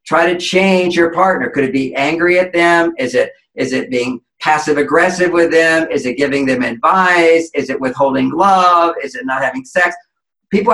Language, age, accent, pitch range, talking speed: English, 50-69, American, 145-180 Hz, 190 wpm